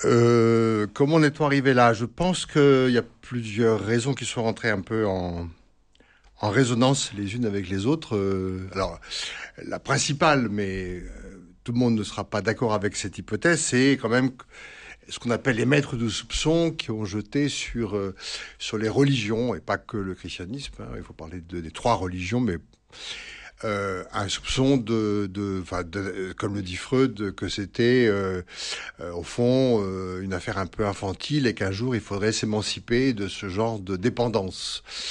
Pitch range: 100-125 Hz